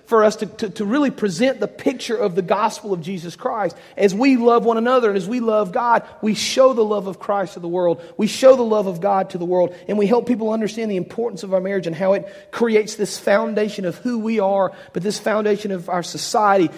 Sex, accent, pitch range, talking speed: male, American, 160-210 Hz, 245 wpm